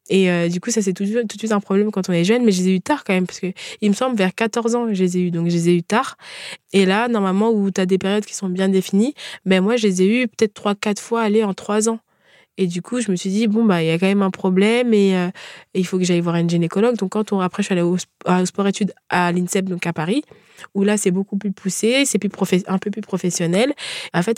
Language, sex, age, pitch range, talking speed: French, female, 20-39, 180-215 Hz, 310 wpm